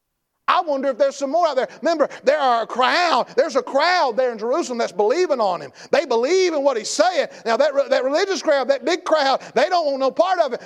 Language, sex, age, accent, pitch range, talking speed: English, male, 50-69, American, 270-370 Hz, 255 wpm